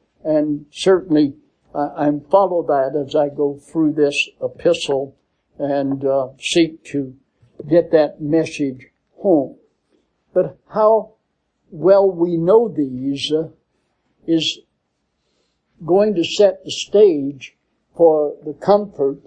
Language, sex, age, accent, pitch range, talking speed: English, male, 60-79, American, 150-205 Hz, 105 wpm